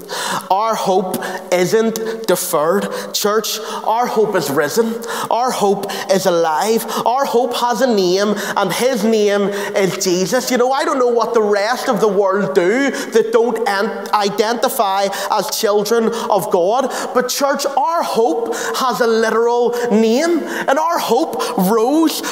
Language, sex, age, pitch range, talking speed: English, male, 30-49, 220-310 Hz, 145 wpm